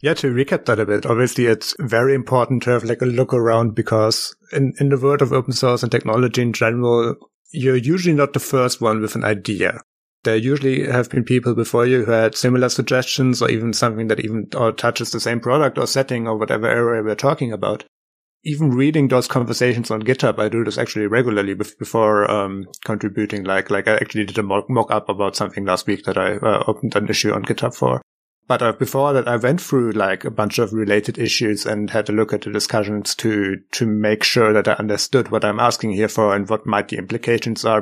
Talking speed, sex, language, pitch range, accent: 220 wpm, male, English, 110-130 Hz, German